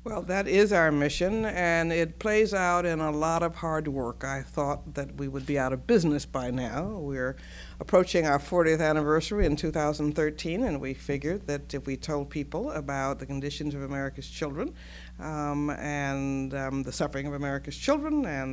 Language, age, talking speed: English, 60-79, 180 wpm